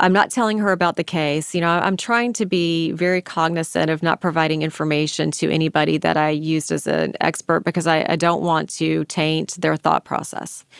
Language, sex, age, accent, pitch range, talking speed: English, female, 30-49, American, 155-180 Hz, 205 wpm